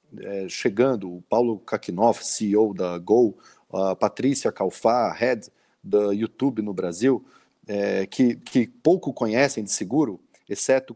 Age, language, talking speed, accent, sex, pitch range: 40-59, Portuguese, 130 wpm, Brazilian, male, 115-165 Hz